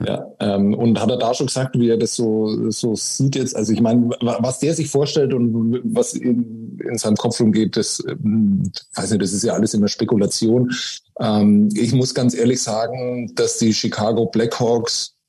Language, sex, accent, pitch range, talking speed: German, male, German, 105-130 Hz, 190 wpm